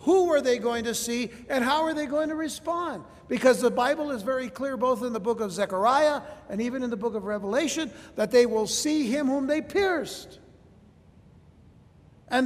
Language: English